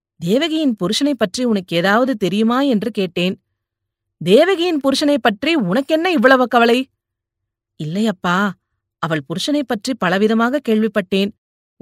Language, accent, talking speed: Tamil, native, 100 wpm